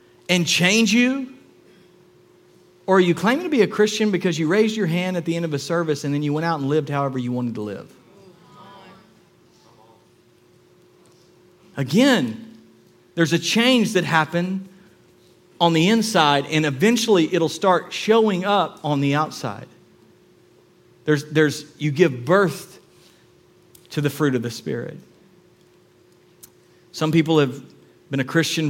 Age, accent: 40-59, American